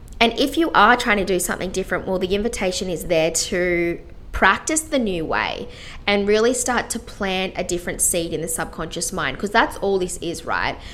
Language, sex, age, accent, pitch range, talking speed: English, female, 20-39, Australian, 170-200 Hz, 205 wpm